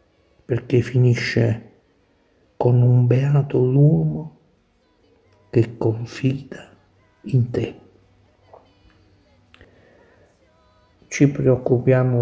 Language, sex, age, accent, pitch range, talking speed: Italian, male, 60-79, native, 105-130 Hz, 60 wpm